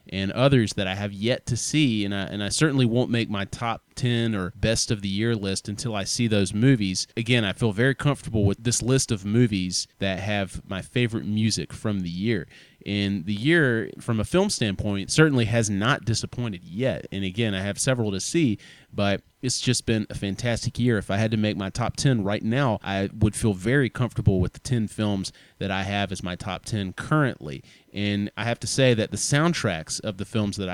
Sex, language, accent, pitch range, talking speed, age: male, English, American, 100-120 Hz, 220 wpm, 30-49